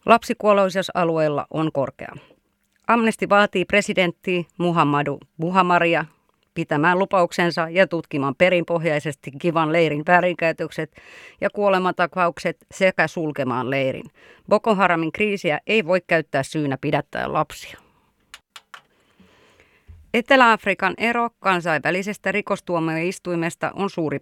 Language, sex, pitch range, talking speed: Finnish, female, 150-190 Hz, 90 wpm